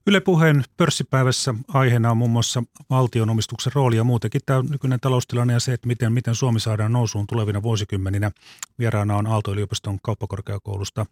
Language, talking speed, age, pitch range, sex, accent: Finnish, 155 wpm, 30-49, 100-120 Hz, male, native